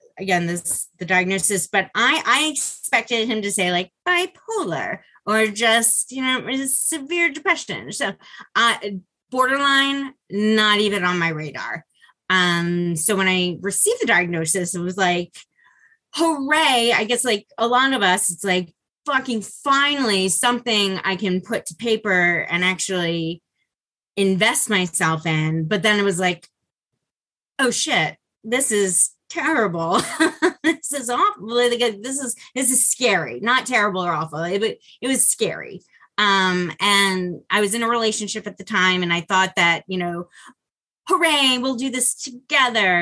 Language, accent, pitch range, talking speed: English, American, 180-255 Hz, 150 wpm